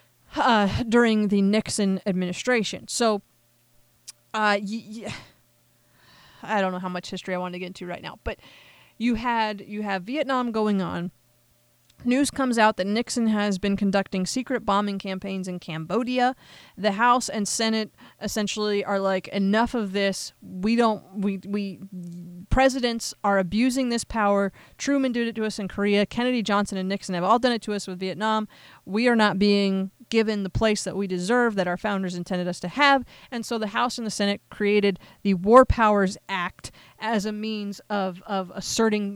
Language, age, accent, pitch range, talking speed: English, 30-49, American, 190-225 Hz, 180 wpm